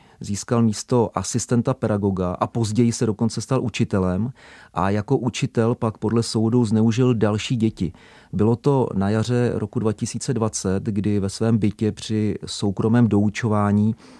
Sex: male